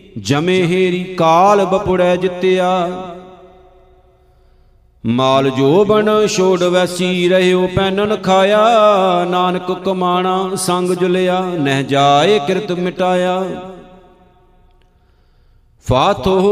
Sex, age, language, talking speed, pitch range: male, 50-69, Punjabi, 80 wpm, 180-190 Hz